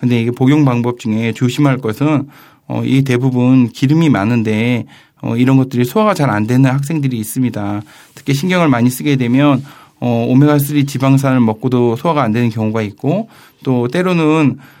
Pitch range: 125-150 Hz